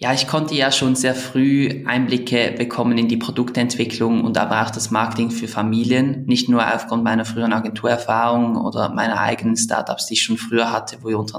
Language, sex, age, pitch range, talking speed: German, male, 20-39, 110-120 Hz, 195 wpm